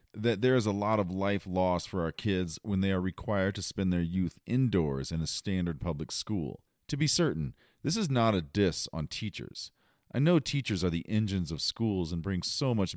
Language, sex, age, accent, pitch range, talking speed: English, male, 40-59, American, 85-110 Hz, 215 wpm